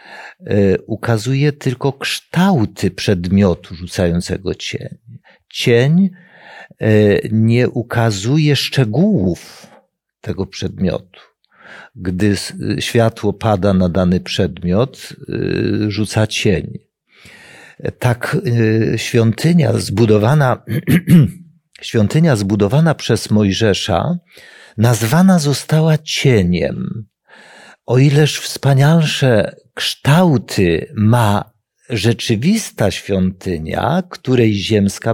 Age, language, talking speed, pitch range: 50-69, Polish, 70 wpm, 100-145 Hz